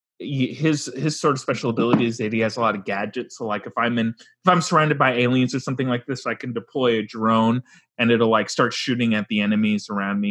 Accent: American